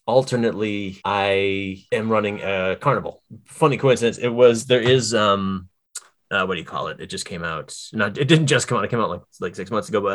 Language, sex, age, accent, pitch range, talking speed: English, male, 20-39, American, 95-130 Hz, 225 wpm